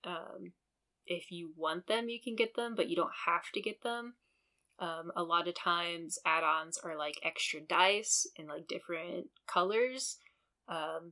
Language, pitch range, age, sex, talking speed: English, 165-185 Hz, 10-29, female, 165 wpm